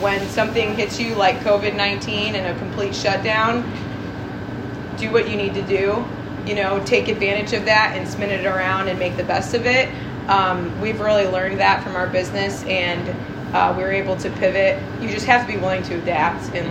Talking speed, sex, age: 200 wpm, female, 20-39